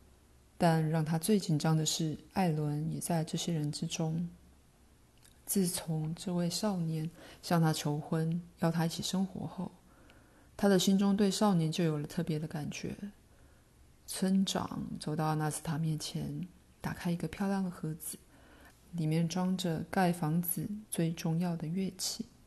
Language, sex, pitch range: Chinese, female, 155-180 Hz